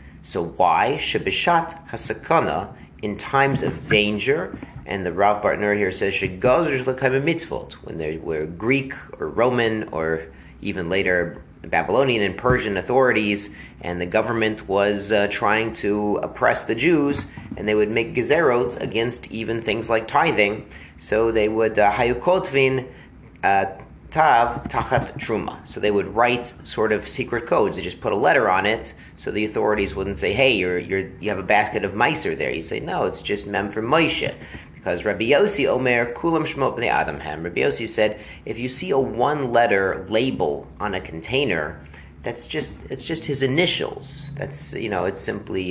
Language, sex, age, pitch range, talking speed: English, male, 30-49, 95-130 Hz, 165 wpm